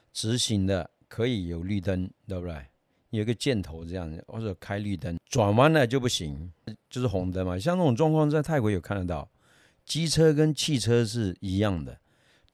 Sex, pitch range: male, 95-135 Hz